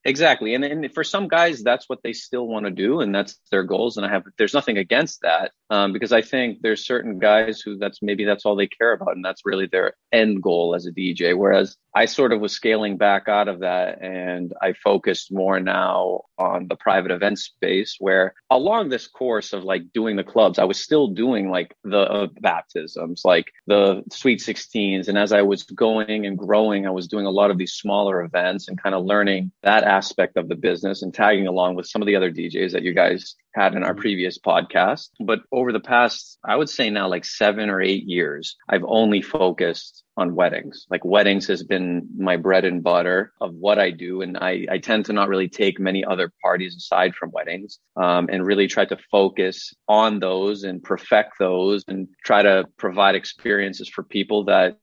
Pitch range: 95-105 Hz